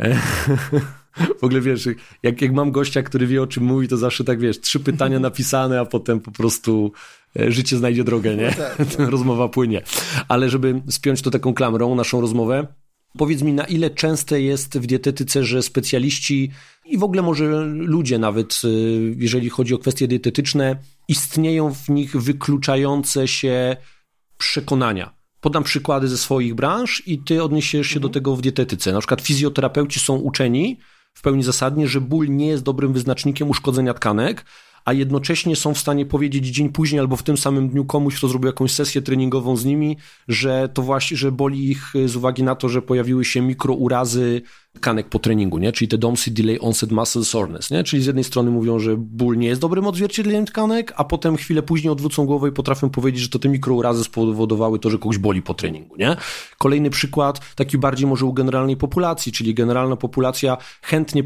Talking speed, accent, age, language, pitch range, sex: 180 wpm, native, 30-49, Polish, 120-145 Hz, male